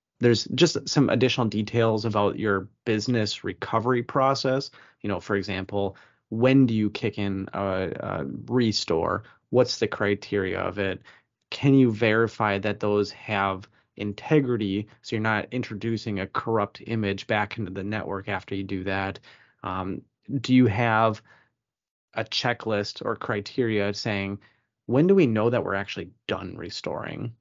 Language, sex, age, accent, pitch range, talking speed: English, male, 30-49, American, 100-125 Hz, 145 wpm